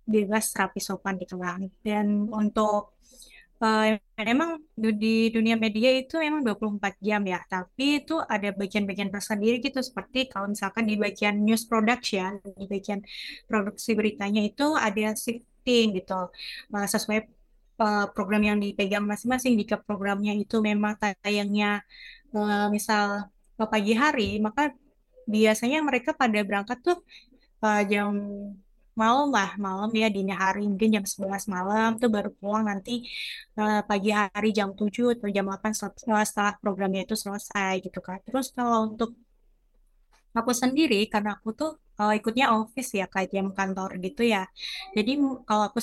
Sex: female